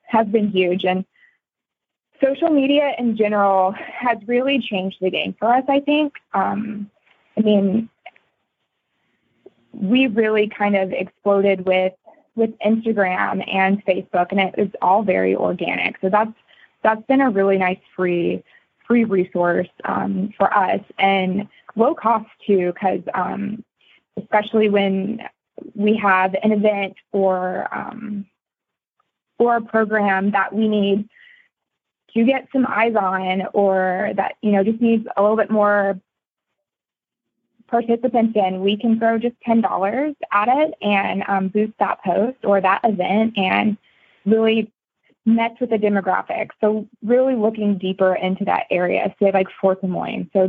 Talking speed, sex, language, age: 145 wpm, female, English, 20-39